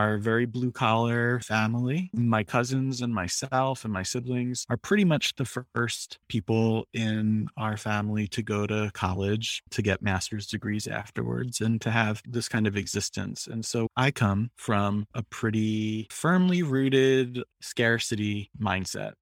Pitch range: 105-125 Hz